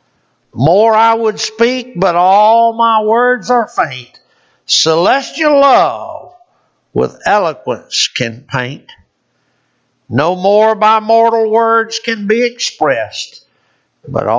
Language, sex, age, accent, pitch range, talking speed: English, male, 60-79, American, 135-225 Hz, 105 wpm